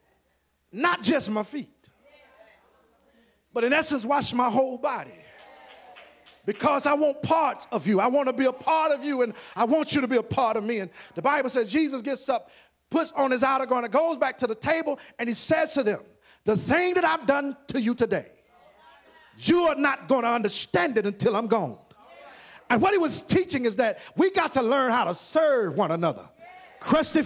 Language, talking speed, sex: English, 205 wpm, male